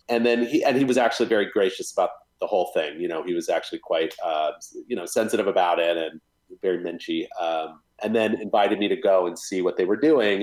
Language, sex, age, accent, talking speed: English, male, 30-49, American, 235 wpm